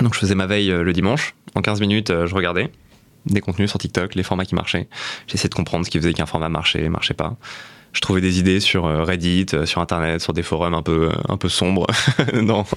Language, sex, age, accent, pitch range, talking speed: French, male, 20-39, French, 95-110 Hz, 225 wpm